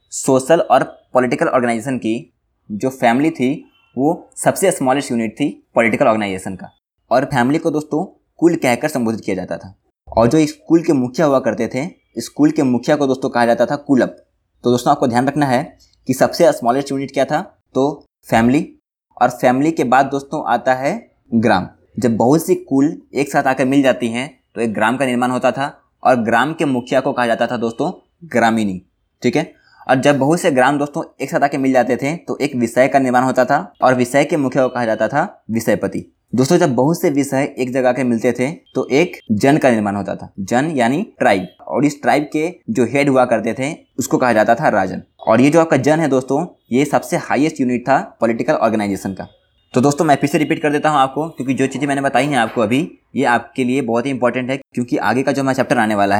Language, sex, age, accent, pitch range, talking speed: Hindi, male, 20-39, native, 120-145 Hz, 220 wpm